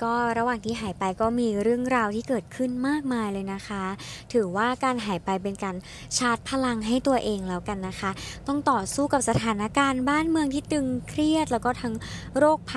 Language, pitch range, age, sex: Thai, 210-285 Hz, 20-39, male